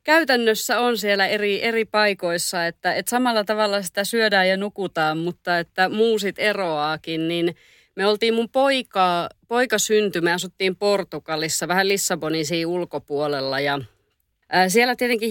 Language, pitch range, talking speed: Finnish, 165-215 Hz, 135 wpm